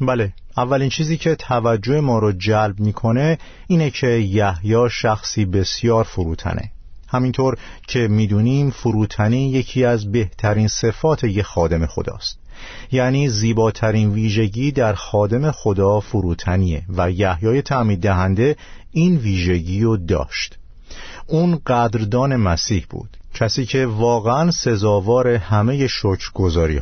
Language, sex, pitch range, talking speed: Persian, male, 95-125 Hz, 115 wpm